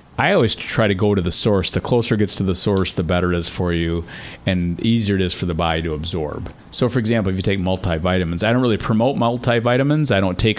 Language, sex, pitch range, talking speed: English, male, 95-120 Hz, 260 wpm